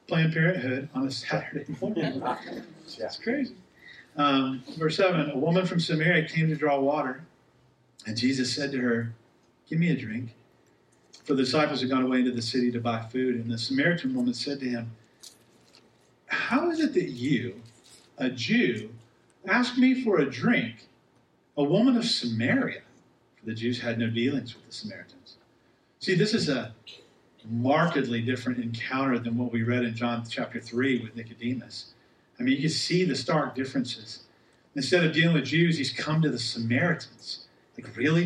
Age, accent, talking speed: 40-59, American, 170 wpm